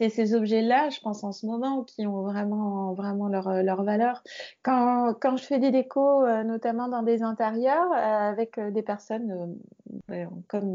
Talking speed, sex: 175 wpm, female